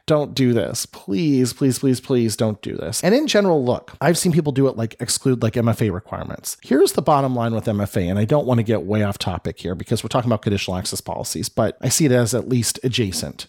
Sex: male